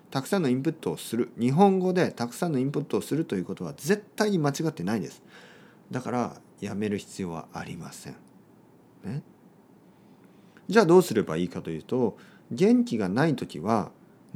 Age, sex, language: 40-59, male, Japanese